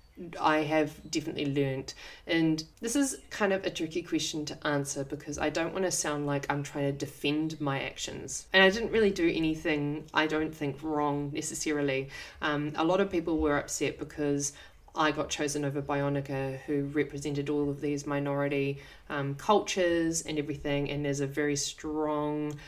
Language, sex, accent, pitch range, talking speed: English, female, Australian, 145-175 Hz, 175 wpm